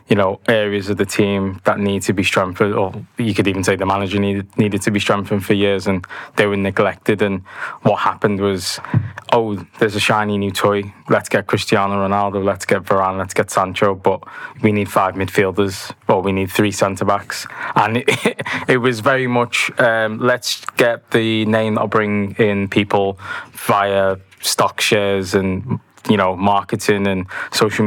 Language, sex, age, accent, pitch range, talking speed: English, male, 20-39, British, 100-115 Hz, 185 wpm